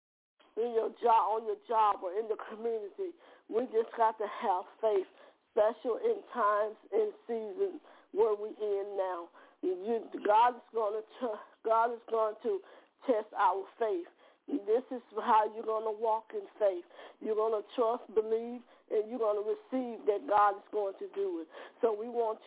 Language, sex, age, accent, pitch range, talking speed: English, female, 50-69, American, 215-360 Hz, 170 wpm